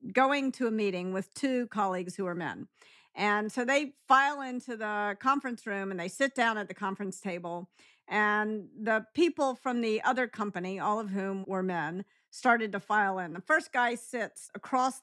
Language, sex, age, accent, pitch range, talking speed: English, female, 50-69, American, 195-260 Hz, 190 wpm